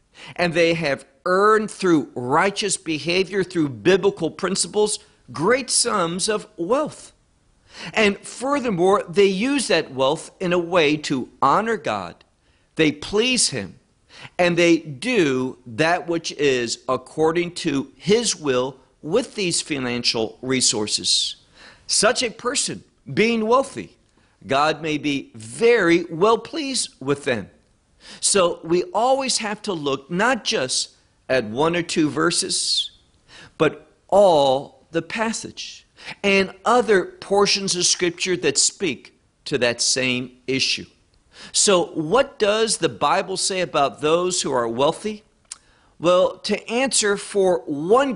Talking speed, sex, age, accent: 125 wpm, male, 50-69, American